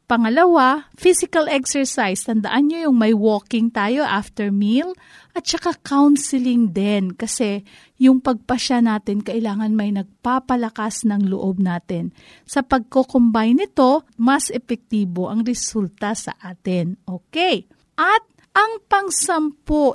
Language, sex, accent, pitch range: Filipino, female, native, 205-270 Hz